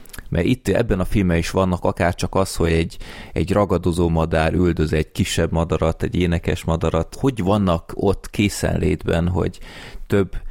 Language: Hungarian